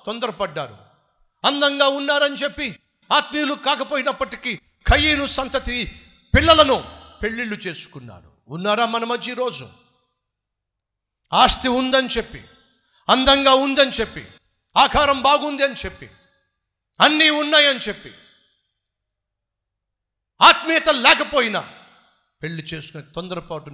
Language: Telugu